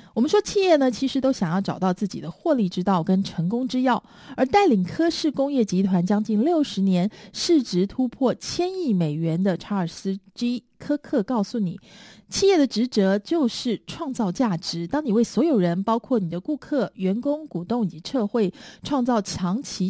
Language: Chinese